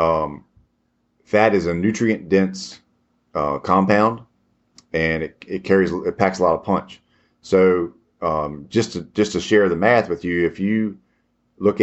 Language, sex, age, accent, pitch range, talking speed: English, male, 40-59, American, 80-95 Hz, 160 wpm